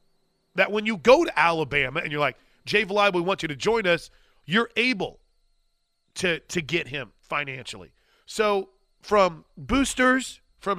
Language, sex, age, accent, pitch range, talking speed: English, male, 40-59, American, 145-205 Hz, 155 wpm